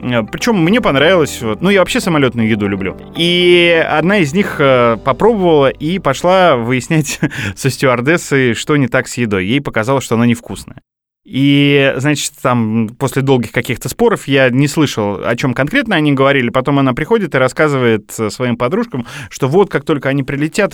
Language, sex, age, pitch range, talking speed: Russian, male, 20-39, 125-170 Hz, 165 wpm